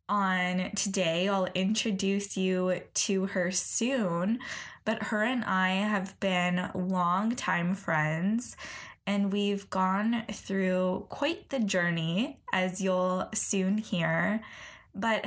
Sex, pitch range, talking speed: female, 180-215 Hz, 115 wpm